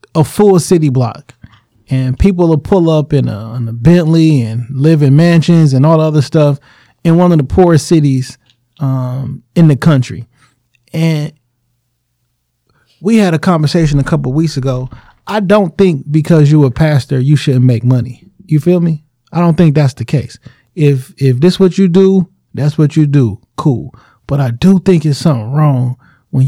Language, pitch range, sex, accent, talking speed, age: English, 125-170 Hz, male, American, 185 wpm, 20-39